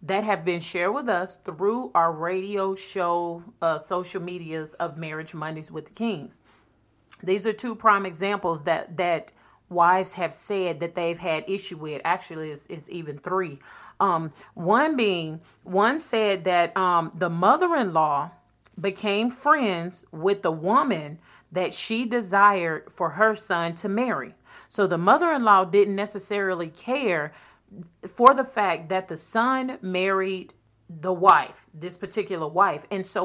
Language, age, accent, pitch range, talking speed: English, 40-59, American, 170-215 Hz, 145 wpm